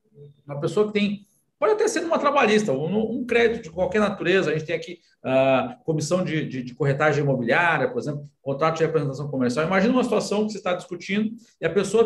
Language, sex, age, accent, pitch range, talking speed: Portuguese, male, 50-69, Brazilian, 190-235 Hz, 210 wpm